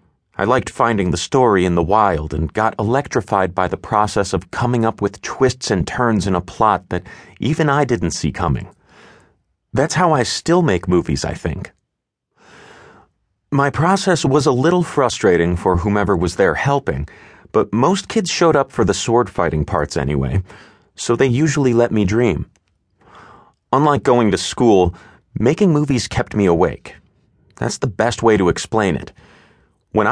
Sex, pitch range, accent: male, 90-125 Hz, American